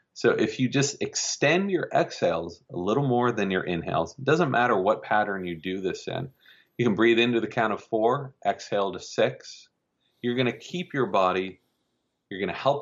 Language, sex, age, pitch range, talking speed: English, male, 40-59, 85-120 Hz, 200 wpm